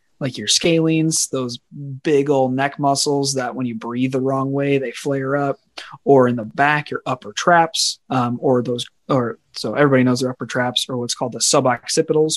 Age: 20-39